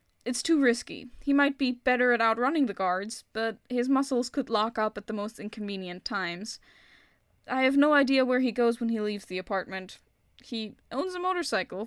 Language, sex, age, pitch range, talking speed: English, female, 10-29, 205-280 Hz, 190 wpm